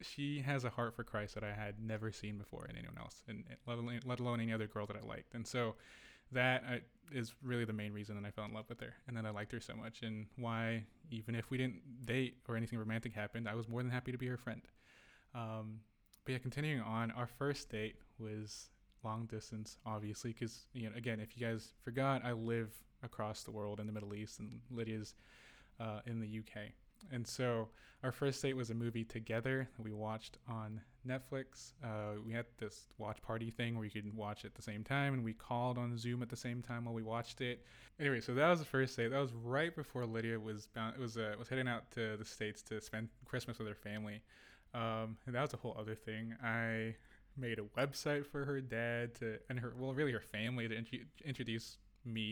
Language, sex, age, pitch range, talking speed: English, male, 20-39, 110-125 Hz, 230 wpm